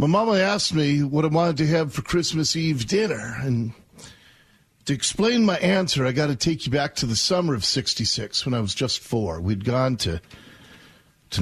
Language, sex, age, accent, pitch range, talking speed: English, male, 50-69, American, 105-150 Hz, 200 wpm